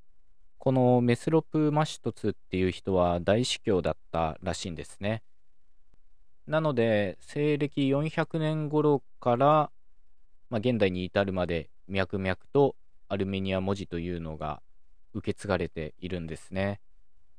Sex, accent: male, native